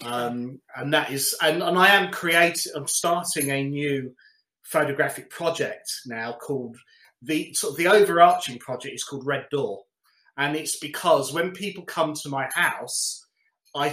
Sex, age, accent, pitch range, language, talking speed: male, 30-49, British, 135-165 Hz, English, 160 wpm